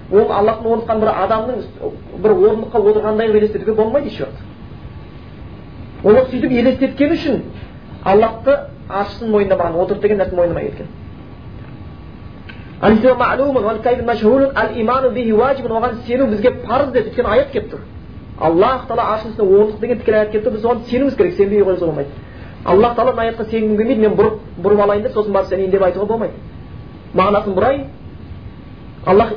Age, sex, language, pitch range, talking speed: 30-49, male, Bulgarian, 205-245 Hz, 90 wpm